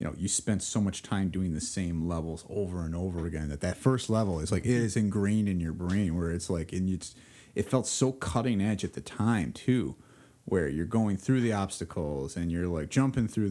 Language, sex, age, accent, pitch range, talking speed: English, male, 30-49, American, 85-115 Hz, 230 wpm